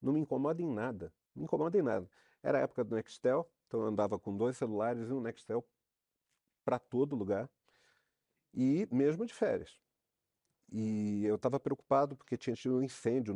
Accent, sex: Brazilian, male